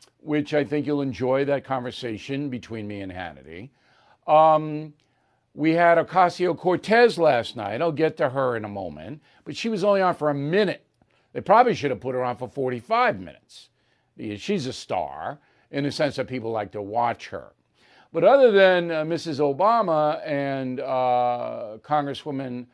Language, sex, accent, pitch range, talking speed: English, male, American, 135-190 Hz, 165 wpm